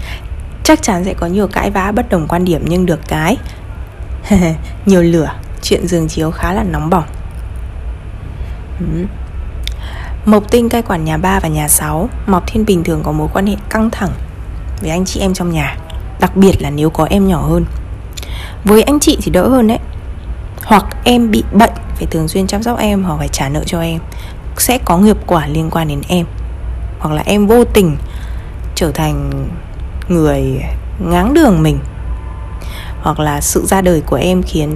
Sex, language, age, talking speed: female, Vietnamese, 20-39, 185 wpm